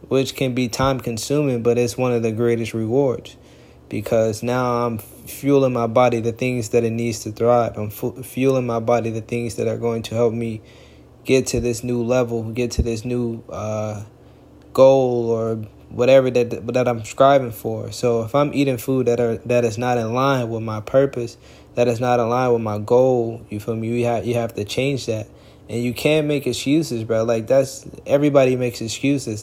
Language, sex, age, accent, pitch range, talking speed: English, male, 20-39, American, 115-130 Hz, 205 wpm